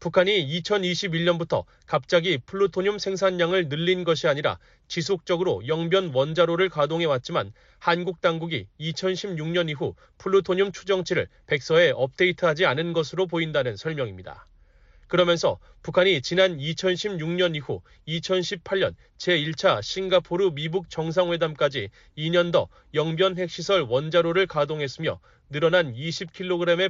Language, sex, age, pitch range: Korean, male, 30-49, 160-185 Hz